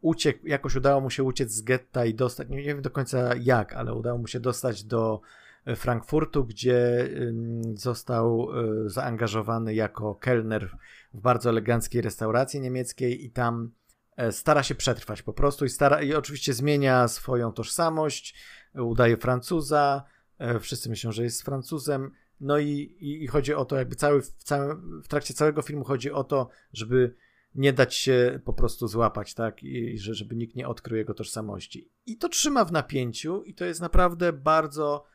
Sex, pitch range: male, 115-140 Hz